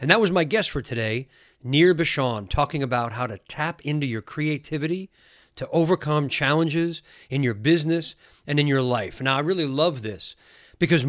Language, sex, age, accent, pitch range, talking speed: English, male, 40-59, American, 120-155 Hz, 180 wpm